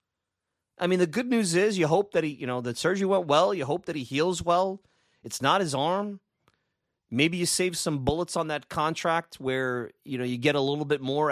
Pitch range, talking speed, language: 120-170 Hz, 230 wpm, English